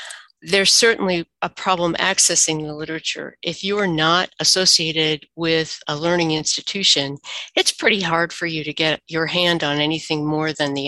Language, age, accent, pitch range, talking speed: English, 50-69, American, 155-185 Hz, 165 wpm